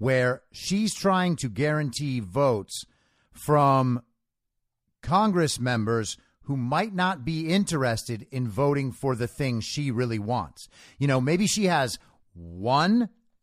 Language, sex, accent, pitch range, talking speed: English, male, American, 120-195 Hz, 125 wpm